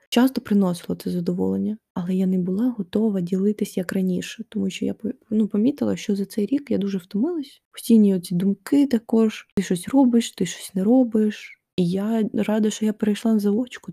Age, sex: 20-39, female